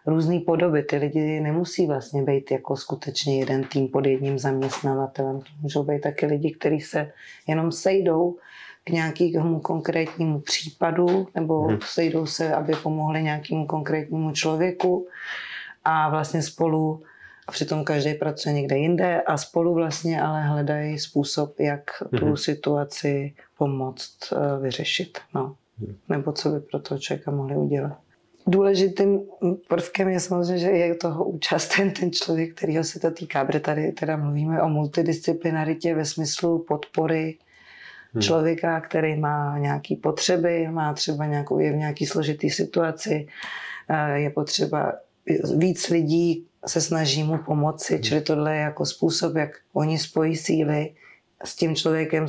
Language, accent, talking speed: Czech, native, 135 wpm